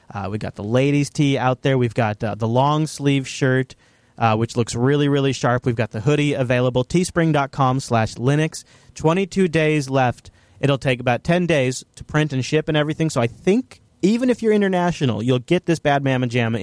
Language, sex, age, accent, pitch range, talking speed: English, male, 30-49, American, 125-155 Hz, 200 wpm